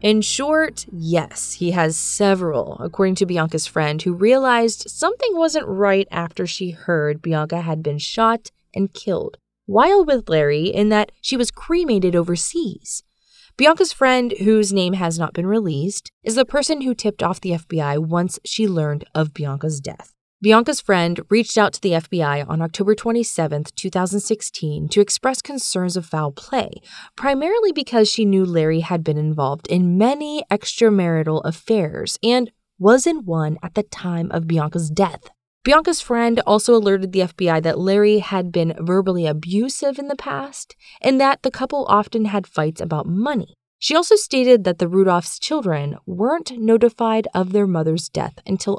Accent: American